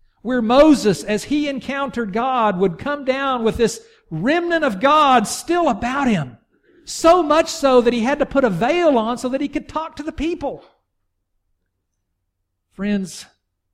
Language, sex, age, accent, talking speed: English, male, 50-69, American, 160 wpm